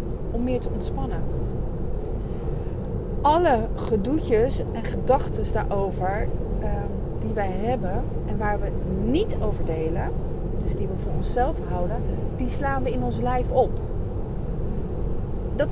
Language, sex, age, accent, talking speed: Dutch, female, 30-49, Dutch, 120 wpm